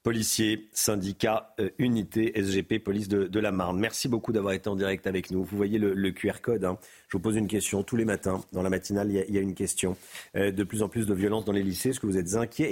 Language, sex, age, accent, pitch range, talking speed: French, male, 50-69, French, 105-130 Hz, 275 wpm